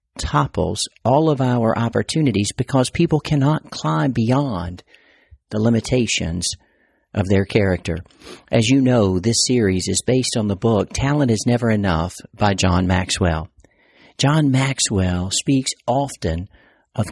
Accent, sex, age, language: American, male, 50-69, English